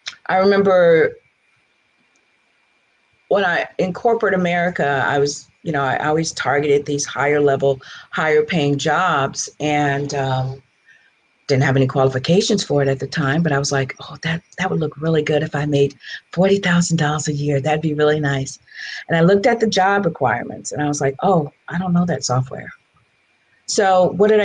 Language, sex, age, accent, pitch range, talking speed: English, female, 50-69, American, 145-210 Hz, 175 wpm